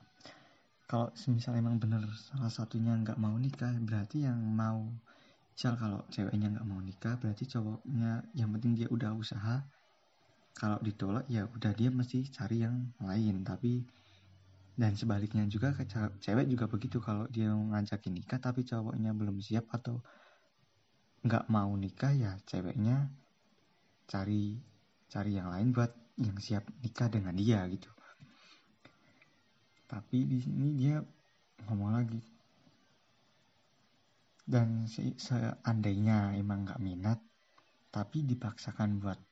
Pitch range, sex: 105-125 Hz, male